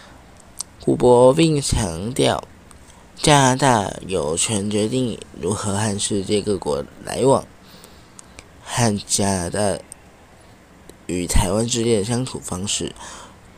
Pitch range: 90-120 Hz